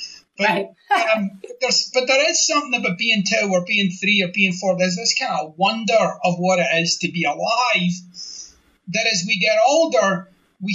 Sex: male